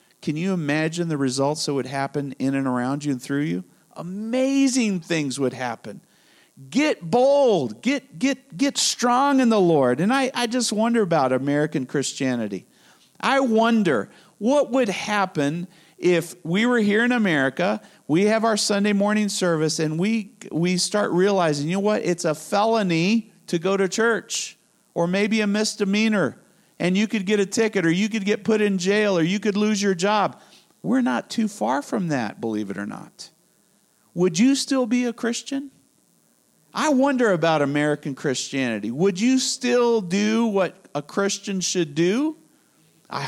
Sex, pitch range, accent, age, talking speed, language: male, 150-225 Hz, American, 50-69, 170 wpm, English